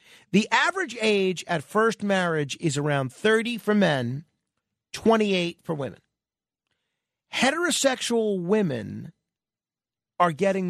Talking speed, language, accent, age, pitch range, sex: 100 wpm, English, American, 40-59, 150-205 Hz, male